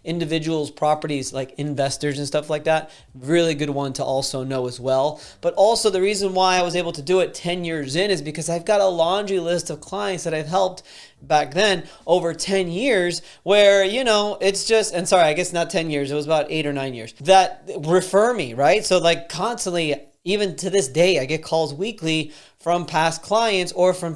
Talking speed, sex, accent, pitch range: 215 wpm, male, American, 145-190 Hz